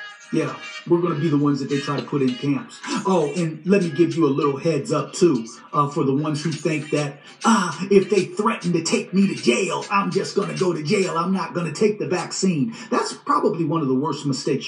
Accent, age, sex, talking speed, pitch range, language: American, 40-59, male, 260 wpm, 145-200 Hz, English